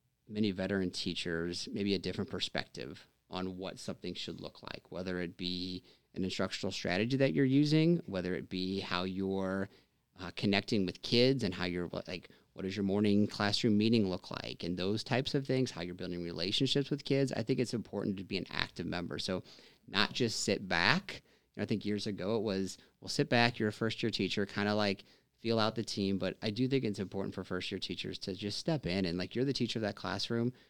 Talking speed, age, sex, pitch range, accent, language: 215 wpm, 30-49, male, 90-110 Hz, American, English